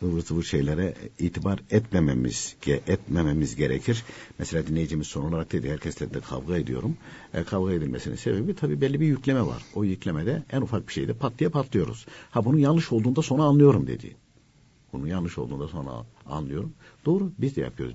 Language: Turkish